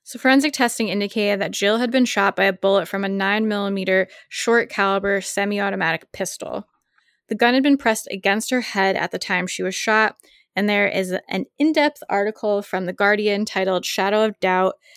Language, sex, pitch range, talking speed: English, female, 195-230 Hz, 185 wpm